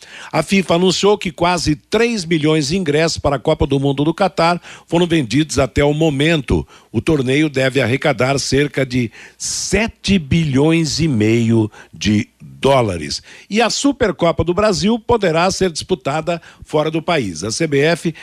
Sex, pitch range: male, 135-190 Hz